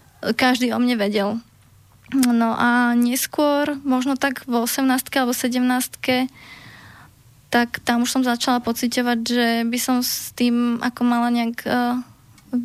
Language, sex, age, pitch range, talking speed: Slovak, female, 20-39, 230-245 Hz, 135 wpm